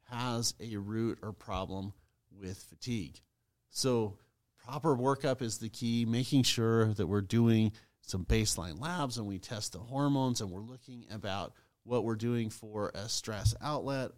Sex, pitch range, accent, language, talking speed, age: male, 110-125 Hz, American, English, 155 wpm, 40-59